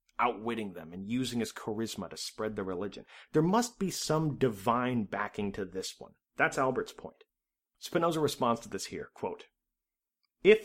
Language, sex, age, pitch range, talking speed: English, male, 30-49, 120-165 Hz, 160 wpm